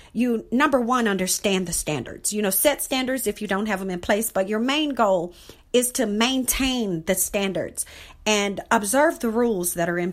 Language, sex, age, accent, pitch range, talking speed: English, female, 40-59, American, 190-250 Hz, 195 wpm